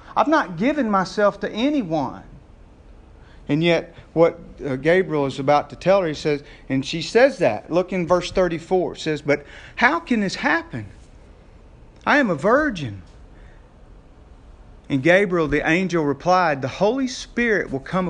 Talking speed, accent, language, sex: 155 wpm, American, English, male